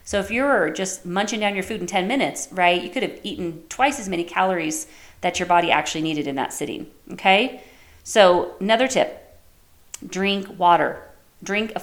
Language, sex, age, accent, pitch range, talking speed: English, female, 40-59, American, 180-220 Hz, 185 wpm